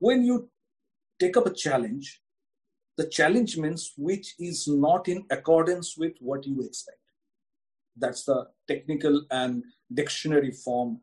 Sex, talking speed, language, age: male, 130 wpm, English, 50-69